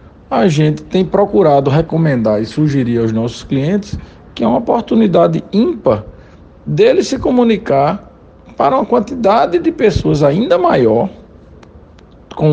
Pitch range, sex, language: 125-185 Hz, male, Portuguese